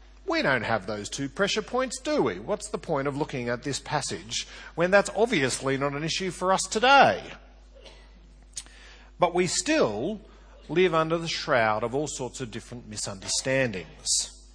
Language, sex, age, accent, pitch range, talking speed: English, male, 40-59, Australian, 130-205 Hz, 160 wpm